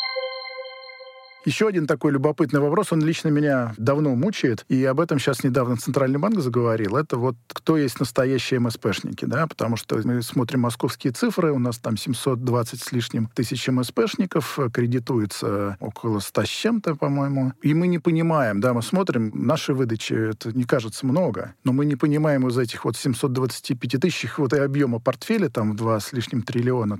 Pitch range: 115-145 Hz